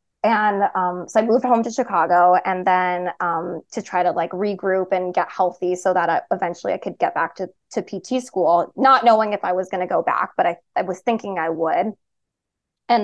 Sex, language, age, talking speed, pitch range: female, English, 20-39, 215 wpm, 190-230 Hz